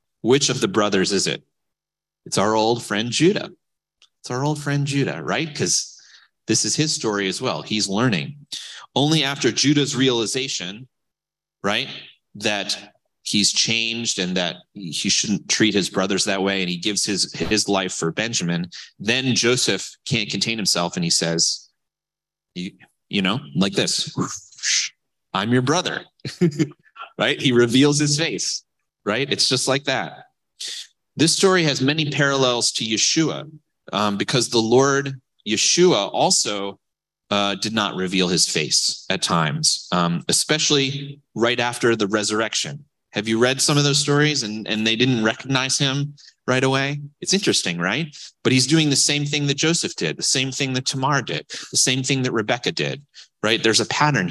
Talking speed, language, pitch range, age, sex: 160 wpm, English, 110-145 Hz, 30-49, male